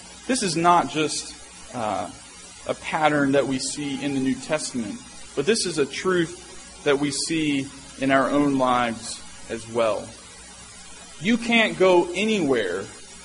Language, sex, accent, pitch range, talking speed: English, male, American, 145-190 Hz, 145 wpm